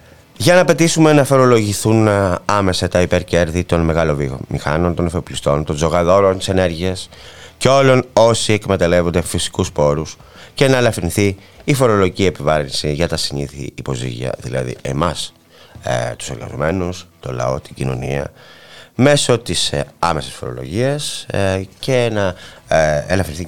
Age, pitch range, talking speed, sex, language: 30-49, 75-110 Hz, 120 wpm, male, Greek